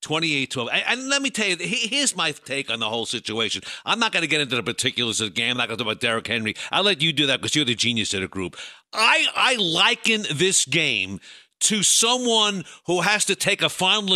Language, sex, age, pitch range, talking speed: English, male, 50-69, 140-205 Hz, 245 wpm